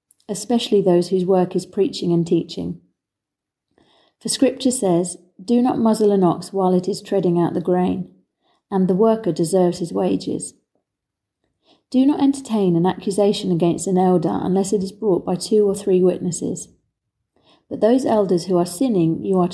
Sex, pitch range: female, 170-215 Hz